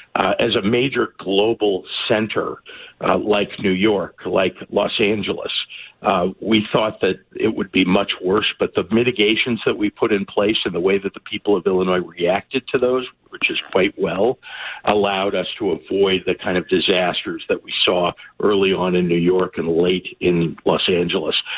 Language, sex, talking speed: English, male, 185 wpm